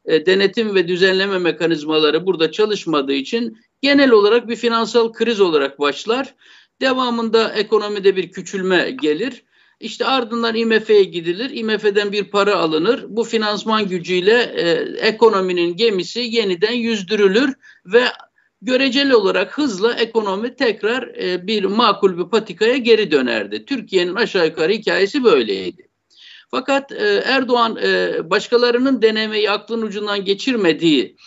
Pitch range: 190-245 Hz